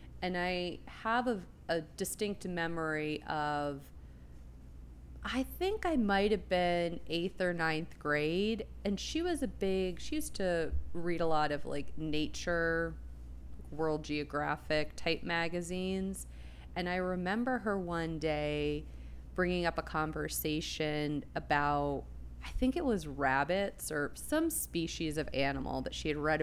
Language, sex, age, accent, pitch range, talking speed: English, female, 30-49, American, 140-175 Hz, 140 wpm